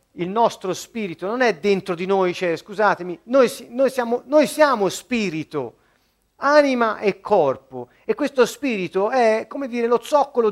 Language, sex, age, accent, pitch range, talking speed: Italian, male, 40-59, native, 160-250 Hz, 160 wpm